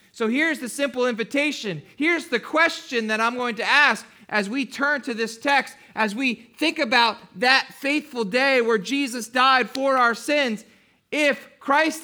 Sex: male